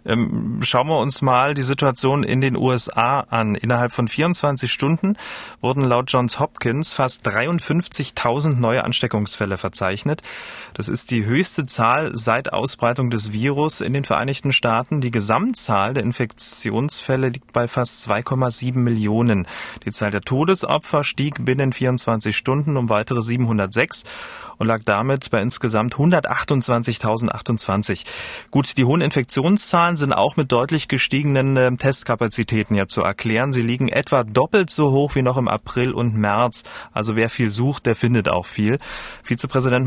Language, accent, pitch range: German, German, 115-140 Hz